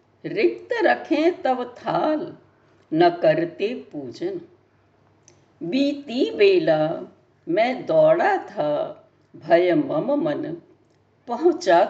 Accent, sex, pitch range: native, female, 230-335 Hz